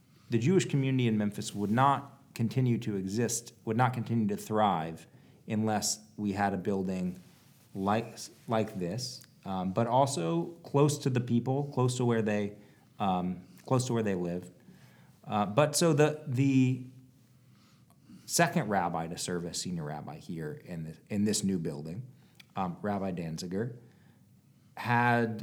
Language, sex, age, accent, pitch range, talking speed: English, male, 40-59, American, 100-130 Hz, 150 wpm